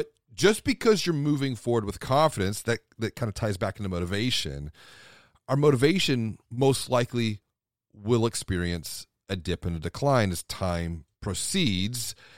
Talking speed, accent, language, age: 140 wpm, American, English, 40-59